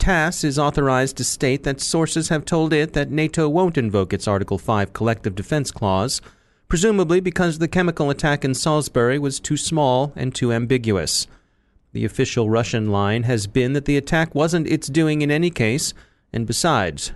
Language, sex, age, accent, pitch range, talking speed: English, male, 30-49, American, 120-150 Hz, 175 wpm